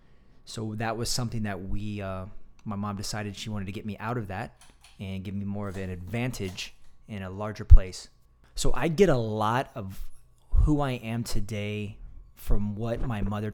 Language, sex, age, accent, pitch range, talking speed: English, male, 30-49, American, 95-115 Hz, 190 wpm